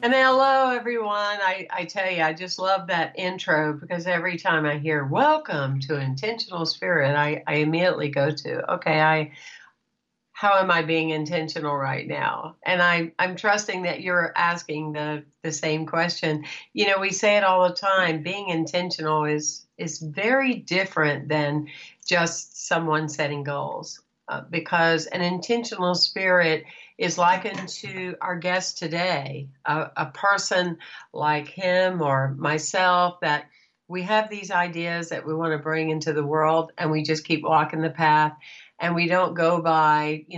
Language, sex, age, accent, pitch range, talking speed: English, female, 60-79, American, 155-180 Hz, 165 wpm